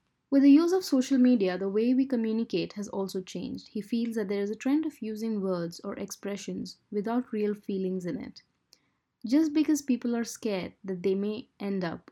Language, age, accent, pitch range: Japanese, 20-39, Indian, 195-255 Hz